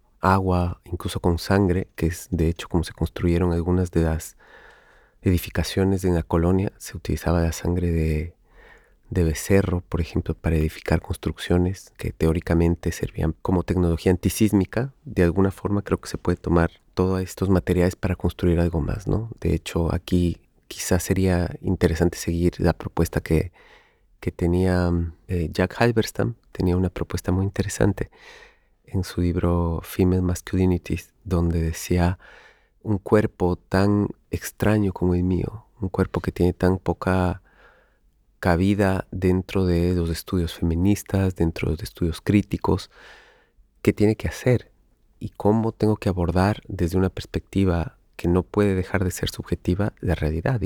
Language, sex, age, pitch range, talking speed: English, male, 30-49, 85-100 Hz, 145 wpm